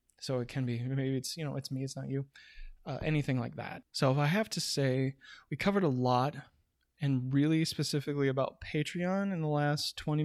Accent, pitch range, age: American, 130-150 Hz, 20-39